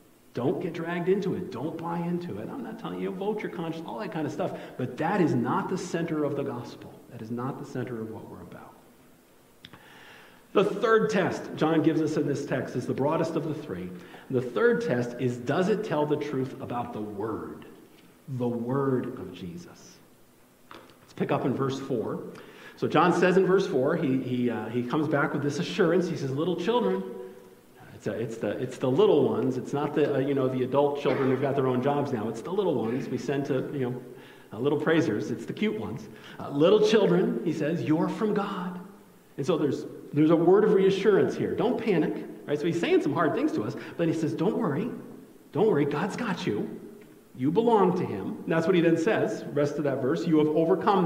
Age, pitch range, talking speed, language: 50-69, 130-180 Hz, 220 wpm, English